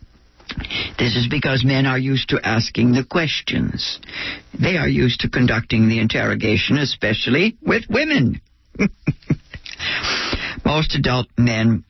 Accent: American